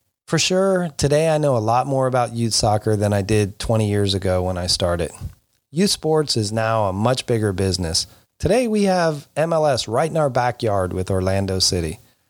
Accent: American